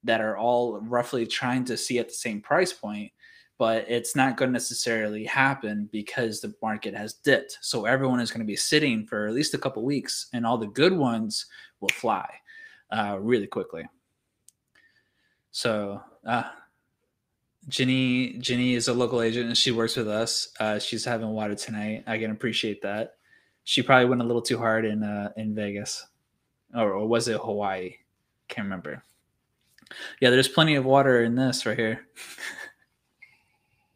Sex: male